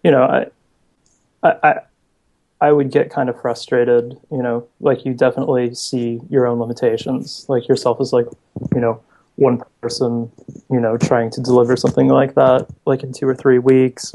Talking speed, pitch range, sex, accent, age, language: 175 wpm, 120-130 Hz, male, American, 20-39, English